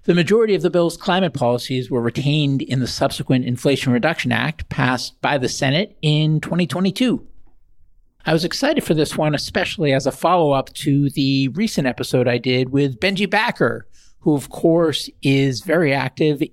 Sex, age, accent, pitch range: male, 50-69, American, 135-180 Hz